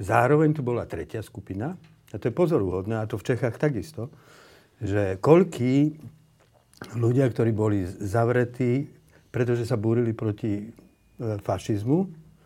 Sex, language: male, Slovak